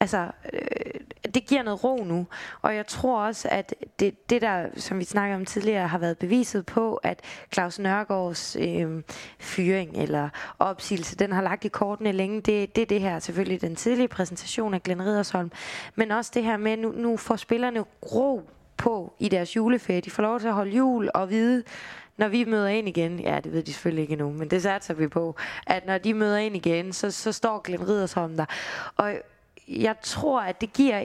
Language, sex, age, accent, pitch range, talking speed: Danish, female, 20-39, native, 185-230 Hz, 210 wpm